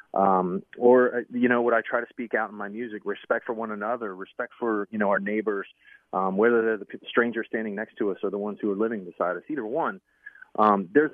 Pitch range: 105-120 Hz